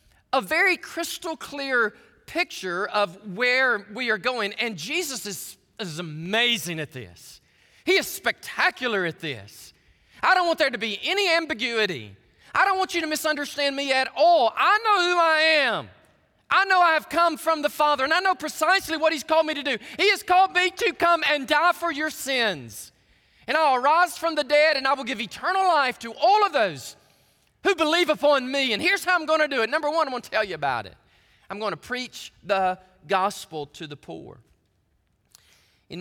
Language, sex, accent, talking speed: English, male, American, 195 wpm